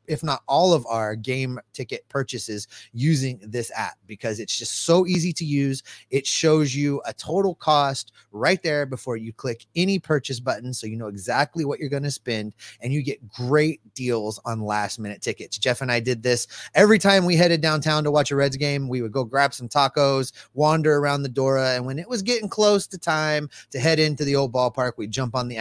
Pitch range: 120-150 Hz